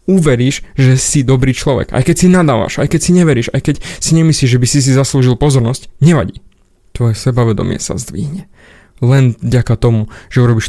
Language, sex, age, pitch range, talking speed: Slovak, male, 20-39, 120-145 Hz, 185 wpm